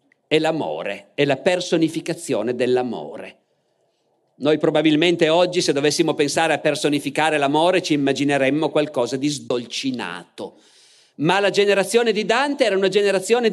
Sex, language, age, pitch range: male, Italian, 50-69, 150-235 Hz